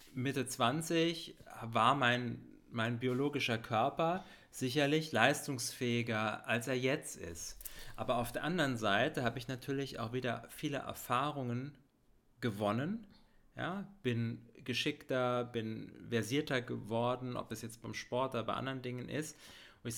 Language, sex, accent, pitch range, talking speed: German, male, German, 110-135 Hz, 130 wpm